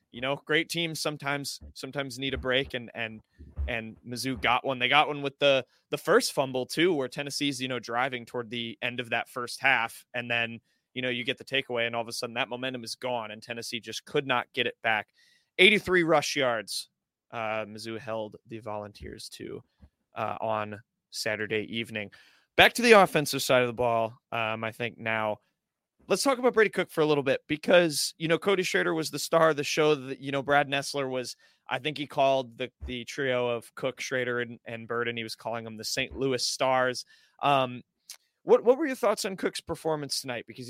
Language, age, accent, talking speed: English, 30-49, American, 215 wpm